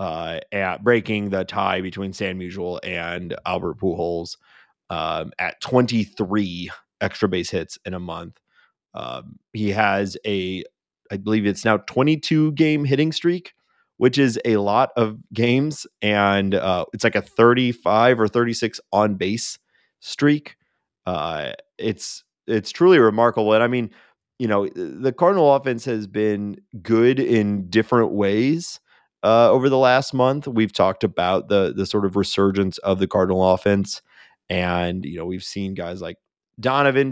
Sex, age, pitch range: male, 30-49, 95-120 Hz